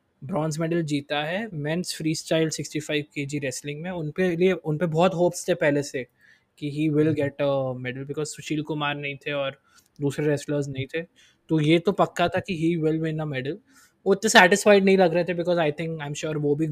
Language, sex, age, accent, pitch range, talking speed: Hindi, male, 20-39, native, 140-165 Hz, 225 wpm